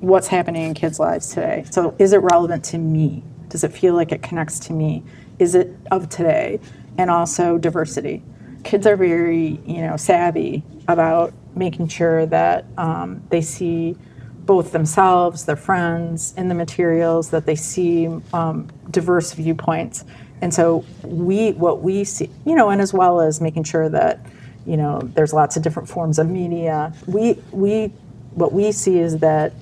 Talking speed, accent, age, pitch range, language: 170 wpm, American, 40-59, 155-175 Hz, English